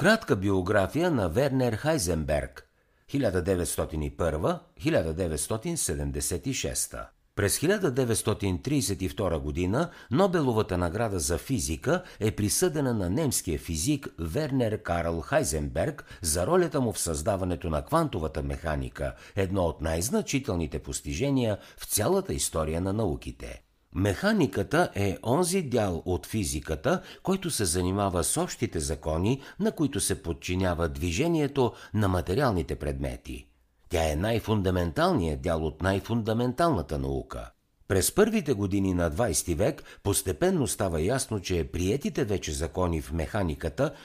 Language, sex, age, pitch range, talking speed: Bulgarian, male, 60-79, 80-130 Hz, 110 wpm